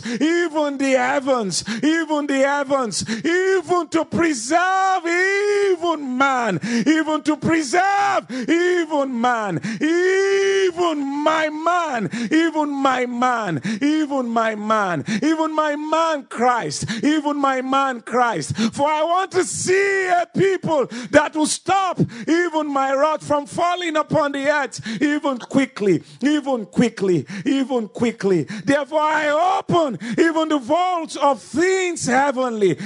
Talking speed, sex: 120 wpm, male